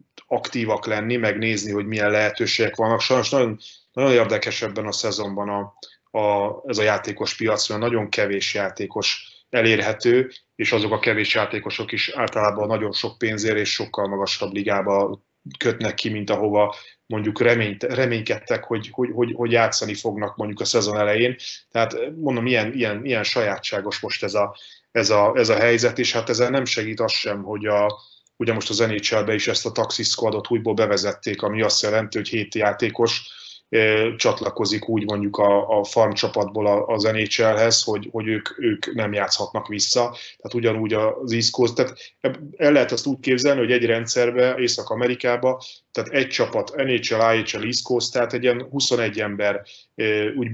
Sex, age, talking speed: male, 30-49, 165 wpm